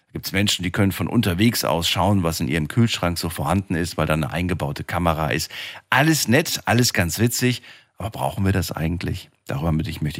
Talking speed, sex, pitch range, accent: 200 wpm, male, 85-115 Hz, German